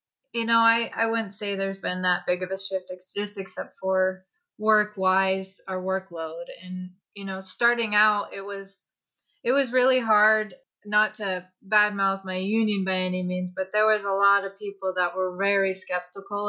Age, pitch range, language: 20-39, 185-210 Hz, English